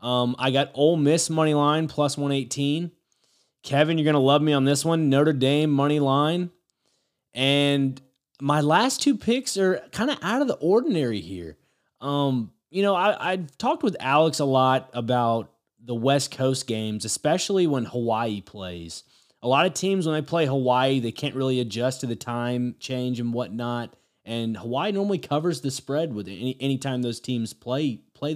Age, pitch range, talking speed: 20-39, 125-165 Hz, 180 wpm